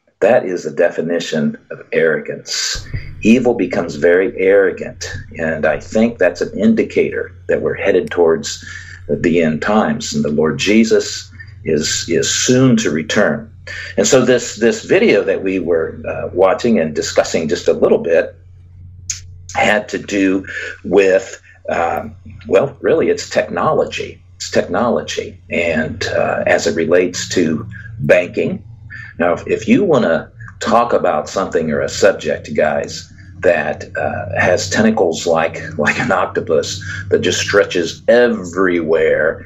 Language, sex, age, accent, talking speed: English, male, 50-69, American, 135 wpm